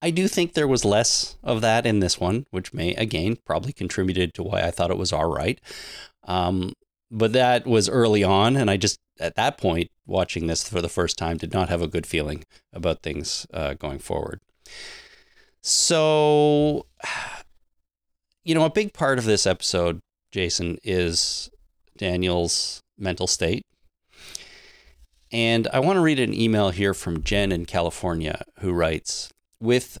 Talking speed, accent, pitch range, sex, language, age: 165 wpm, American, 85-120 Hz, male, English, 30-49